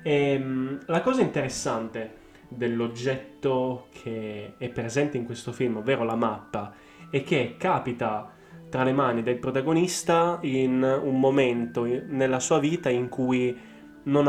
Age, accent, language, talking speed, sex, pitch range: 10-29, native, Italian, 125 wpm, male, 120-155 Hz